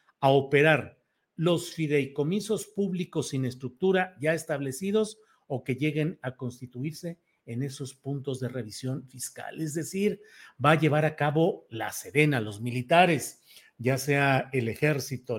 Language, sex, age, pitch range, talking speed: Spanish, male, 50-69, 135-180 Hz, 135 wpm